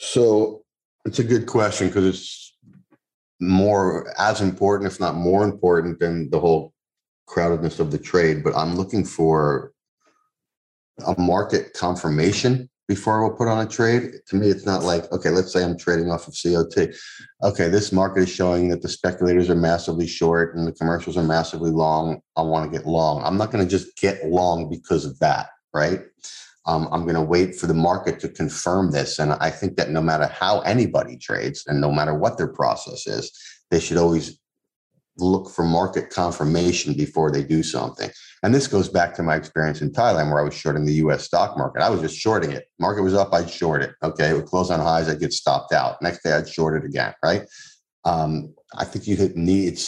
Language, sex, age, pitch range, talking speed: English, male, 30-49, 80-95 Hz, 205 wpm